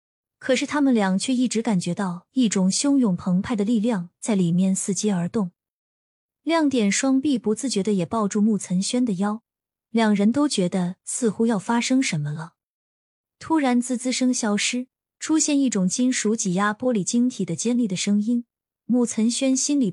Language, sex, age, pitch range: Chinese, female, 20-39, 195-250 Hz